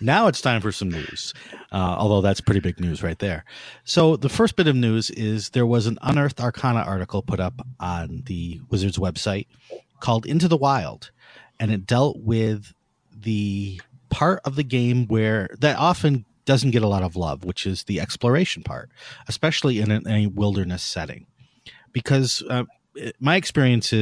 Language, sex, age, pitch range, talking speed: English, male, 40-59, 100-130 Hz, 180 wpm